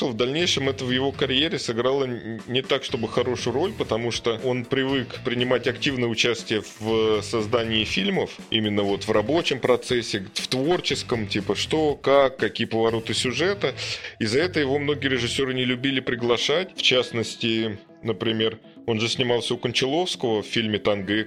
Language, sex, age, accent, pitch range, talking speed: Russian, male, 20-39, native, 110-130 Hz, 155 wpm